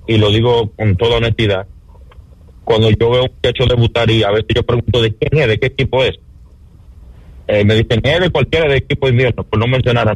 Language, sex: English, male